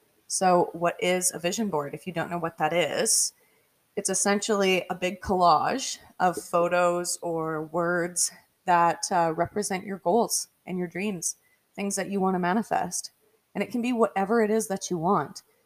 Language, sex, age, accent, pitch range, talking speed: English, female, 20-39, American, 175-215 Hz, 175 wpm